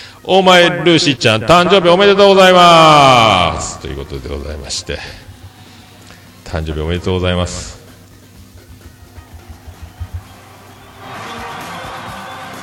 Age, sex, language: 40-59, male, Japanese